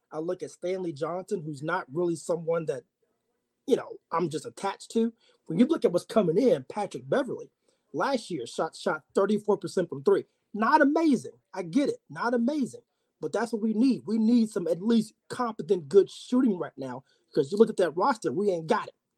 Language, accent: English, American